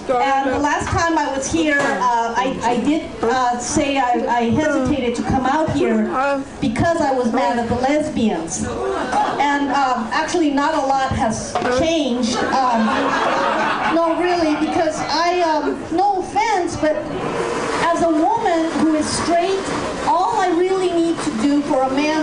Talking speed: 160 wpm